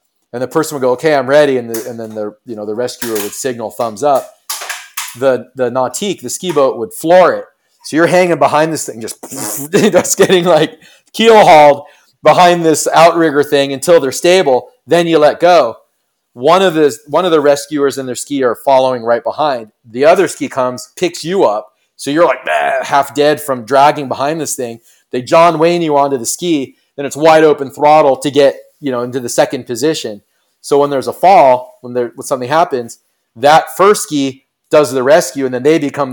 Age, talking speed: 30-49, 205 wpm